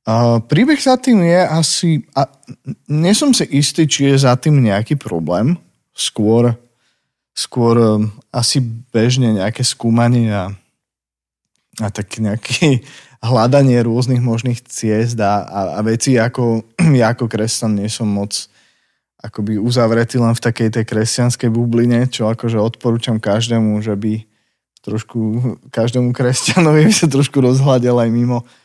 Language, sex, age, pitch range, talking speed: Slovak, male, 20-39, 110-125 Hz, 135 wpm